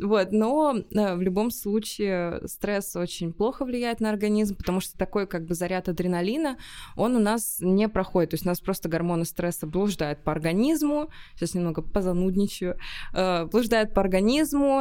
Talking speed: 165 wpm